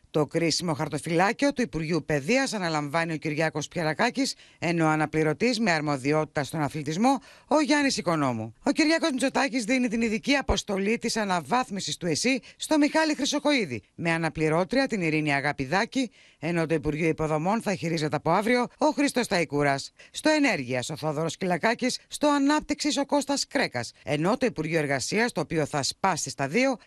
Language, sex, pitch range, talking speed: Greek, female, 150-235 Hz, 155 wpm